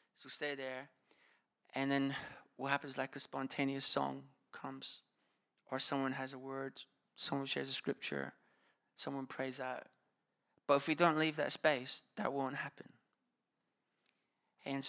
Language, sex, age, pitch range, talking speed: English, male, 30-49, 135-145 Hz, 145 wpm